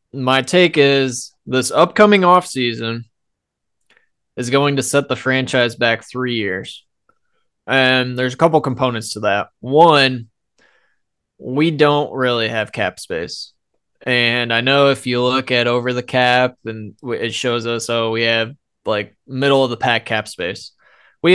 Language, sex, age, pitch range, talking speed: English, male, 20-39, 120-145 Hz, 155 wpm